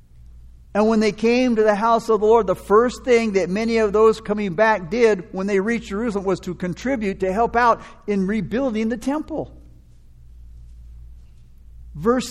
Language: English